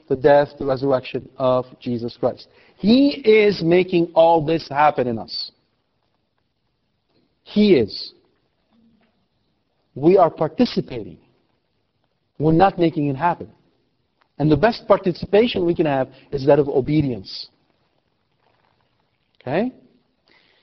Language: English